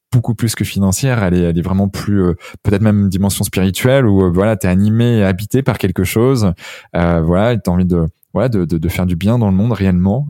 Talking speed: 220 wpm